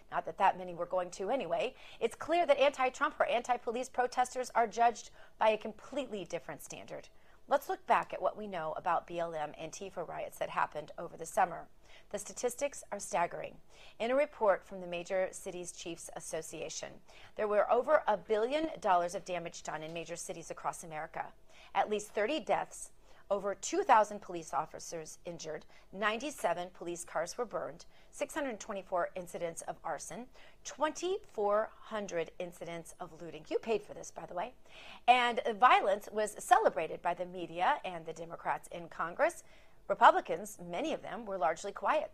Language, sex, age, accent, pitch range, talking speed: English, female, 30-49, American, 175-250 Hz, 160 wpm